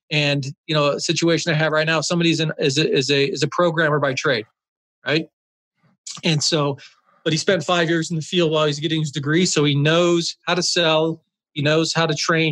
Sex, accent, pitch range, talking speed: male, American, 150-175 Hz, 220 wpm